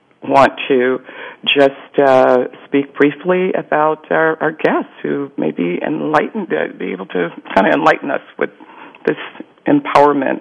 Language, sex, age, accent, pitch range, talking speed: English, female, 50-69, American, 130-175 Hz, 145 wpm